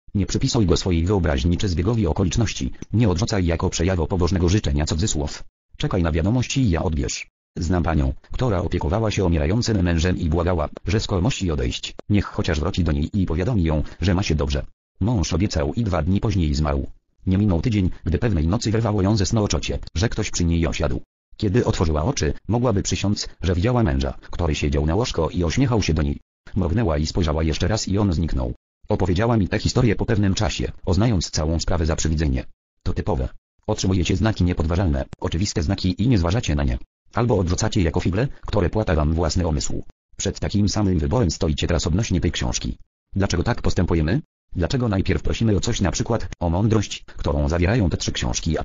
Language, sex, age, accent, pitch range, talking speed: English, male, 40-59, Polish, 80-105 Hz, 190 wpm